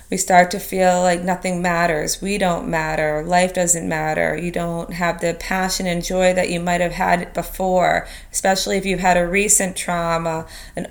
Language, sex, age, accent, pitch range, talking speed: English, female, 30-49, American, 175-195 Hz, 185 wpm